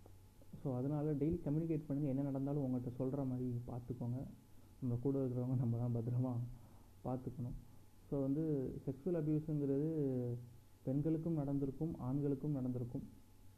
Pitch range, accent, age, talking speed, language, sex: 120-145 Hz, native, 30-49, 115 wpm, Tamil, male